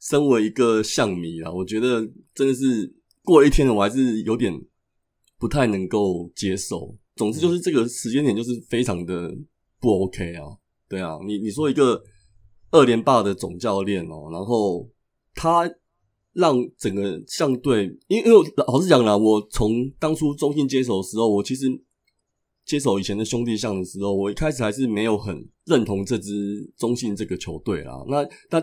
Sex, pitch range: male, 100-135 Hz